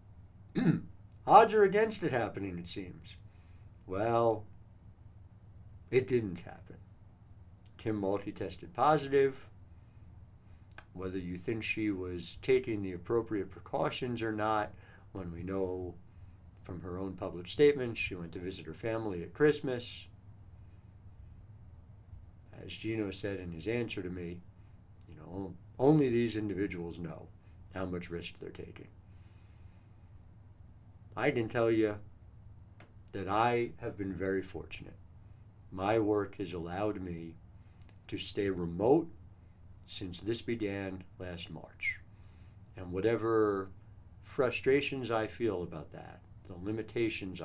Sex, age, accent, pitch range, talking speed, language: male, 60-79, American, 95-105 Hz, 120 wpm, English